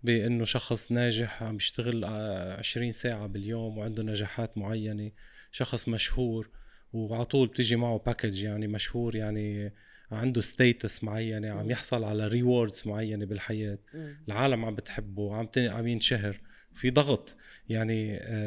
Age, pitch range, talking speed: 20-39, 105-120 Hz, 120 wpm